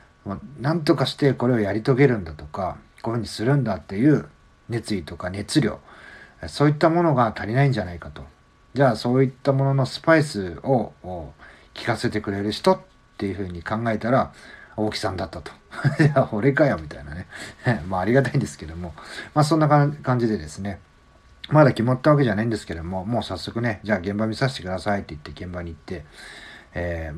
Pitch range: 90-140 Hz